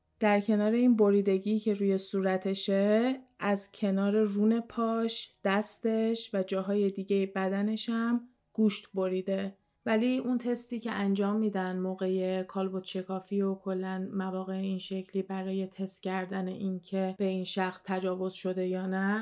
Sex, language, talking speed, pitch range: female, Persian, 140 wpm, 190-210 Hz